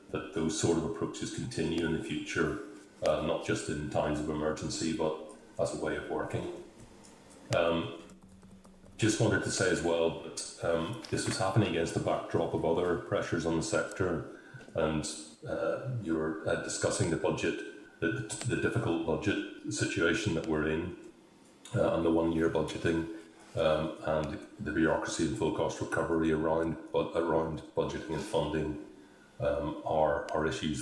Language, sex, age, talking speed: English, male, 40-59, 160 wpm